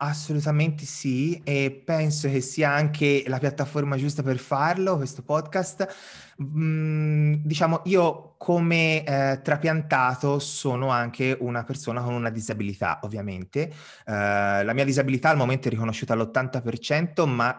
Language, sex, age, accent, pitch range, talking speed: Italian, male, 20-39, native, 110-145 Hz, 125 wpm